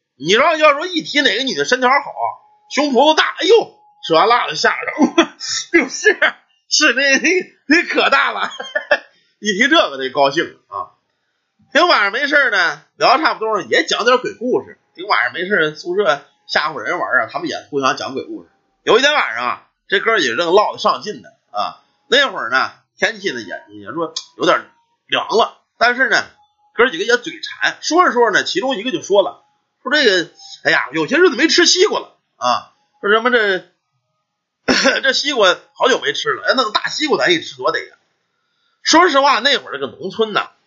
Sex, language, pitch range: male, Chinese, 250-390 Hz